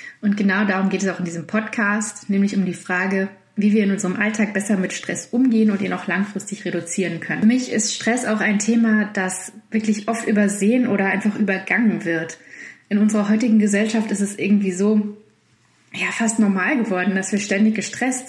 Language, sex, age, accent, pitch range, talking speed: German, female, 20-39, German, 195-235 Hz, 190 wpm